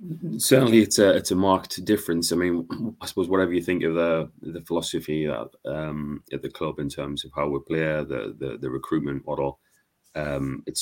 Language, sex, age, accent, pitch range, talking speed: English, male, 30-49, British, 75-85 Hz, 200 wpm